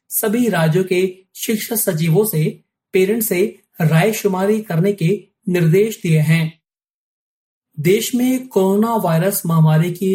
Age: 30-49